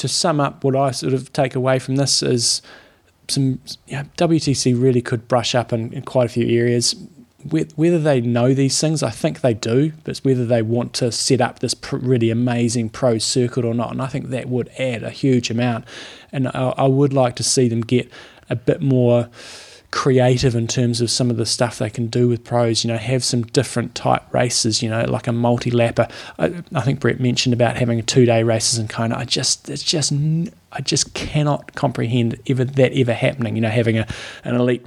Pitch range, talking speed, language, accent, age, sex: 115-135 Hz, 220 wpm, English, Australian, 20-39, male